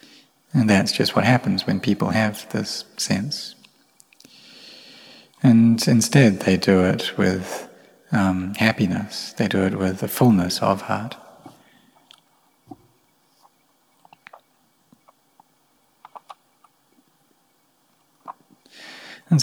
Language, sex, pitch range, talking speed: English, male, 95-110 Hz, 85 wpm